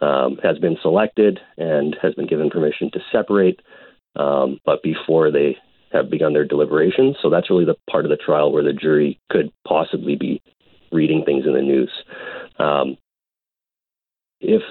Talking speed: 165 wpm